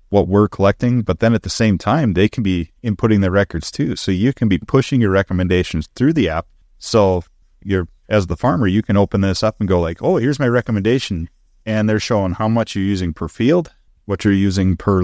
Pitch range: 95-115 Hz